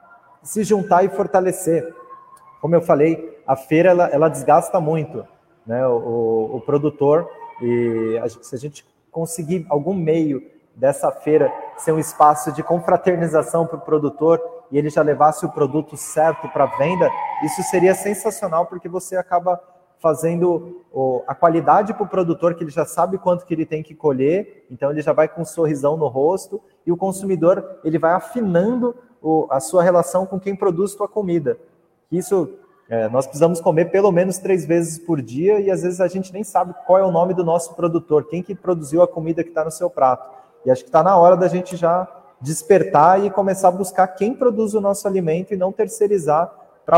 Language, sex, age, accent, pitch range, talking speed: Portuguese, male, 20-39, Brazilian, 155-190 Hz, 190 wpm